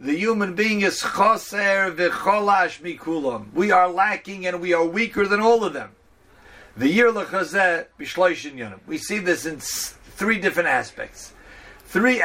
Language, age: English, 50-69